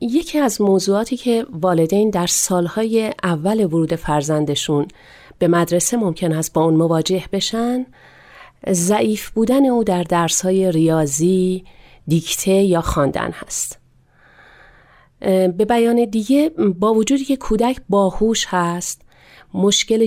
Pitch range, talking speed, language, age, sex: 175-230 Hz, 115 wpm, Persian, 30-49, female